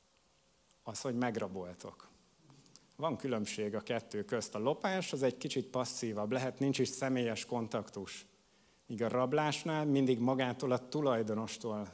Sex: male